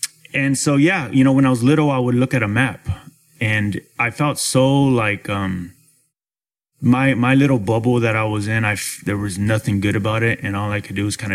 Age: 20-39